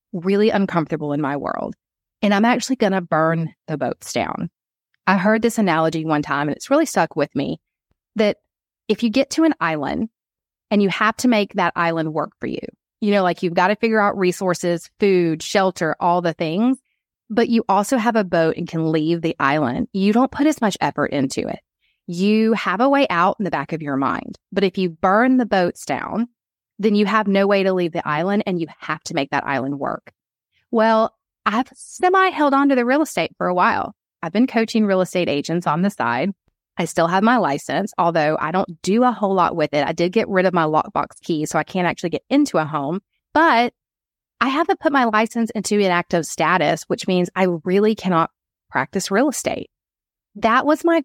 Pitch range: 165-225 Hz